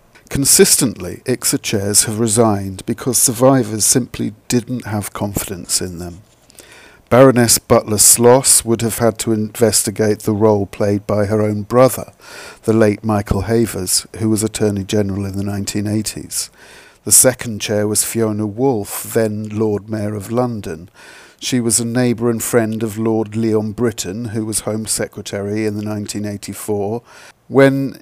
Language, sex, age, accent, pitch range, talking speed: English, male, 50-69, British, 105-120 Hz, 140 wpm